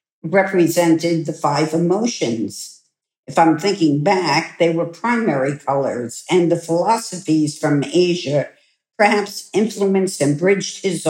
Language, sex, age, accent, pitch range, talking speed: English, female, 60-79, American, 160-195 Hz, 120 wpm